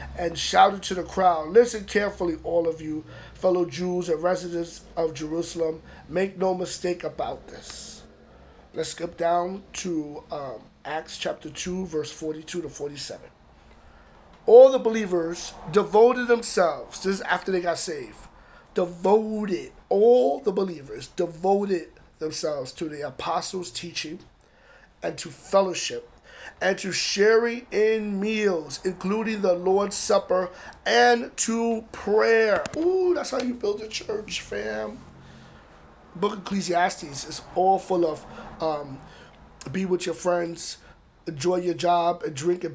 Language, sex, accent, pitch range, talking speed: English, male, American, 165-205 Hz, 135 wpm